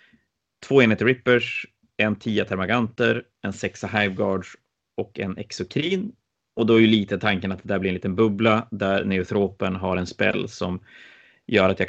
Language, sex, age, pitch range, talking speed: Swedish, male, 30-49, 100-120 Hz, 170 wpm